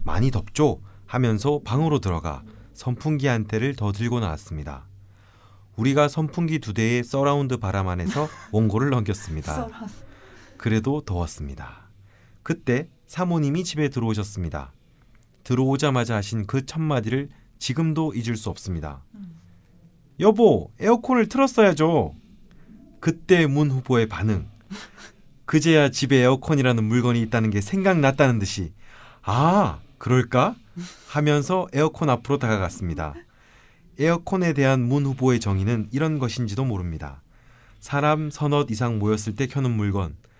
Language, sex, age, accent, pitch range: Korean, male, 30-49, native, 105-145 Hz